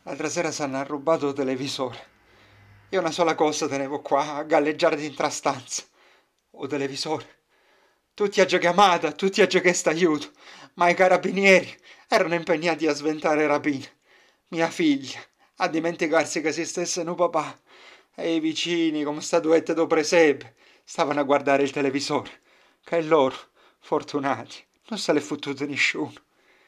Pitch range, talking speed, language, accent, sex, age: 145-175 Hz, 145 wpm, Italian, native, male, 40-59